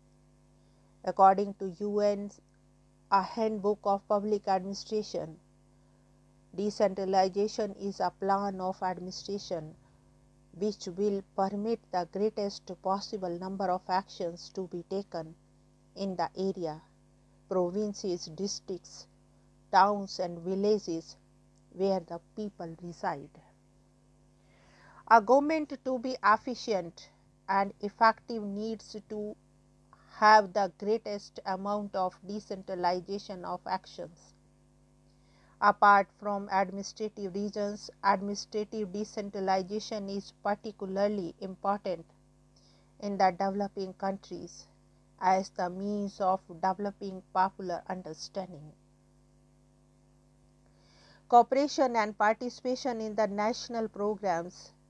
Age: 50-69